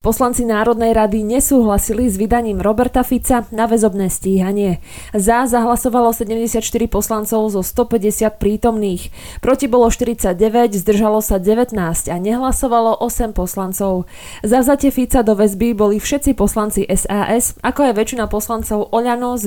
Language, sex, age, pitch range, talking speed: Slovak, female, 20-39, 200-240 Hz, 135 wpm